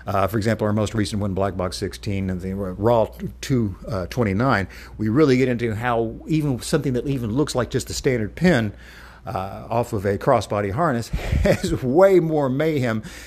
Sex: male